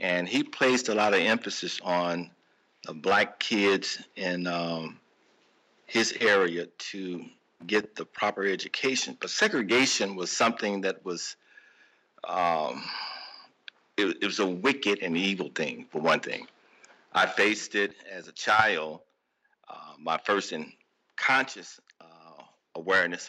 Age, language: 50-69, English